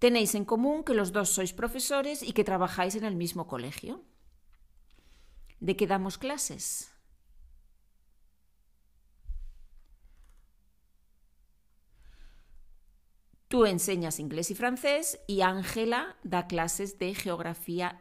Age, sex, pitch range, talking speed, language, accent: 40-59, female, 170-230 Hz, 100 wpm, Spanish, Spanish